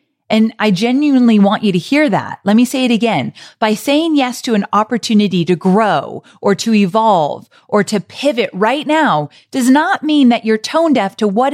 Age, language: 30-49, English